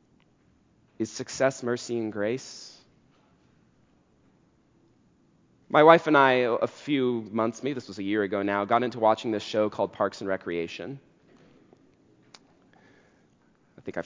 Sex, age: male, 30-49